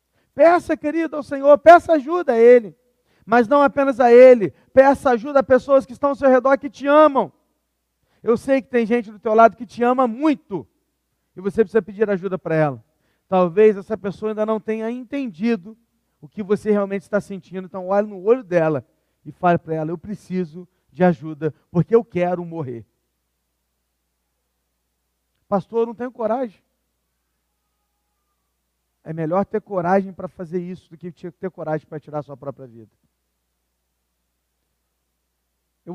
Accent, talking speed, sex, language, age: Brazilian, 160 wpm, male, Portuguese, 40-59